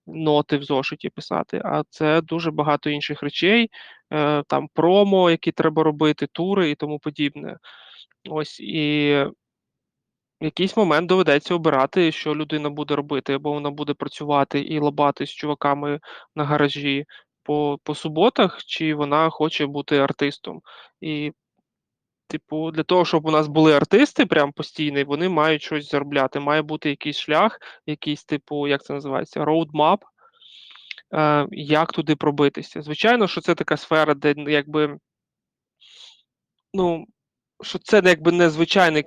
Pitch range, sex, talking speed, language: 145-165 Hz, male, 135 wpm, Ukrainian